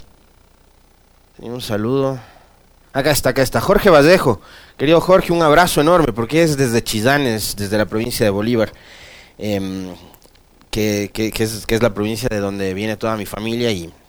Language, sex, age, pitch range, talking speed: Spanish, male, 30-49, 105-140 Hz, 150 wpm